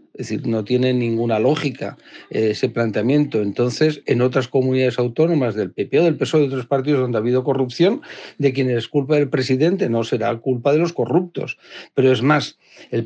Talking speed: 190 wpm